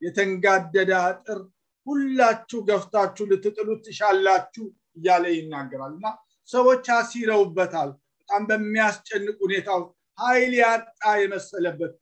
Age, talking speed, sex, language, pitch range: 50-69, 55 wpm, male, English, 190-220 Hz